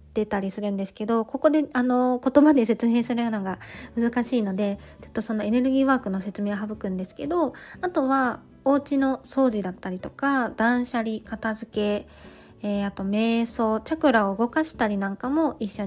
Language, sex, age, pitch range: Japanese, female, 20-39, 210-285 Hz